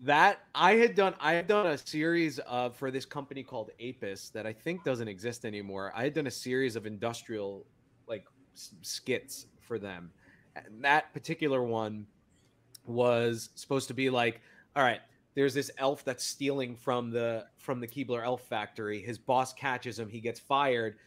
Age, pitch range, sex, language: 30-49, 115-140 Hz, male, English